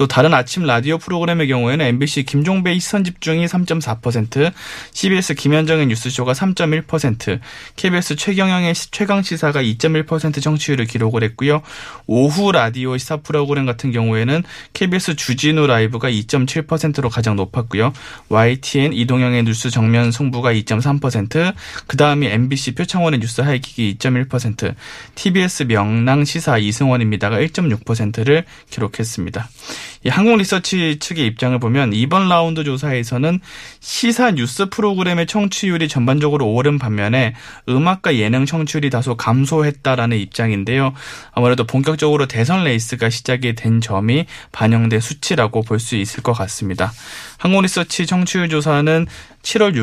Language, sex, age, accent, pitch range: Korean, male, 20-39, native, 120-160 Hz